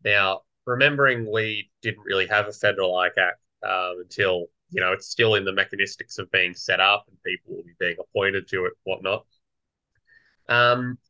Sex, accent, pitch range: male, Australian, 95-125 Hz